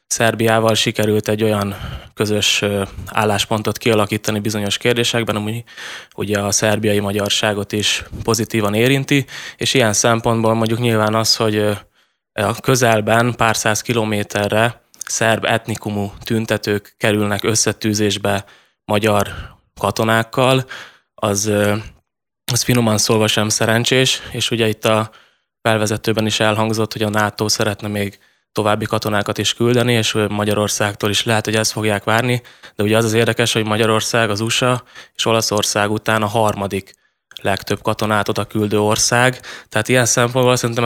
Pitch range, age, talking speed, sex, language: 105-115 Hz, 20-39, 130 wpm, male, Hungarian